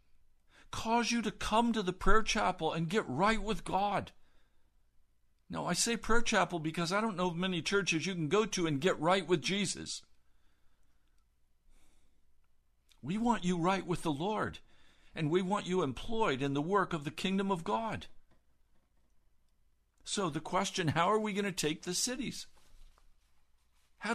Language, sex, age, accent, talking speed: English, male, 60-79, American, 165 wpm